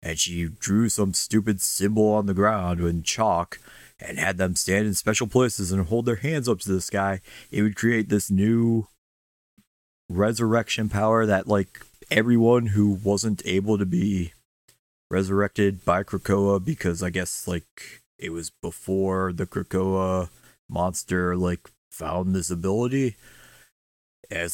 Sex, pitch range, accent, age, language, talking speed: male, 85-105 Hz, American, 20-39, English, 145 wpm